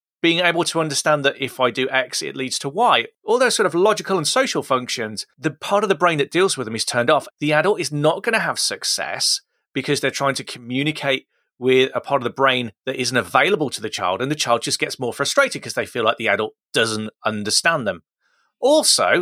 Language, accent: English, British